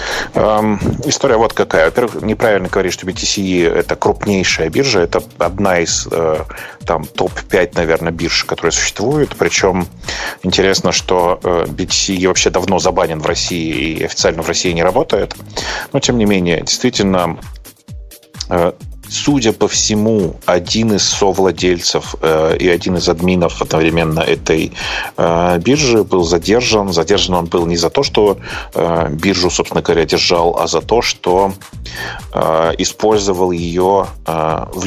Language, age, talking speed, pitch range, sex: Russian, 30-49, 130 wpm, 85-100 Hz, male